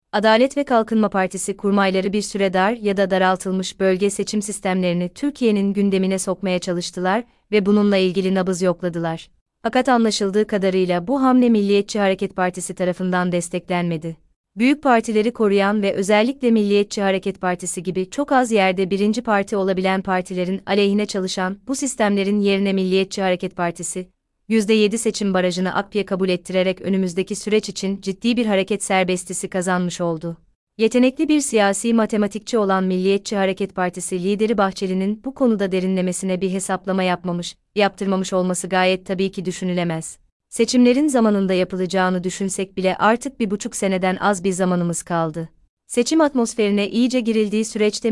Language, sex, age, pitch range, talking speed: Turkish, female, 30-49, 185-210 Hz, 140 wpm